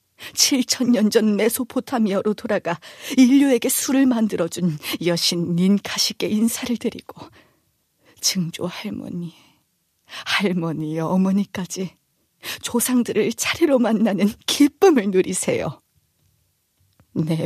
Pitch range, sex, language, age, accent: 185-255 Hz, female, Korean, 40-59, native